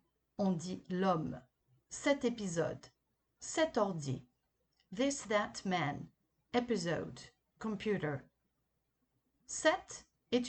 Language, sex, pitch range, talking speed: French, female, 170-260 Hz, 80 wpm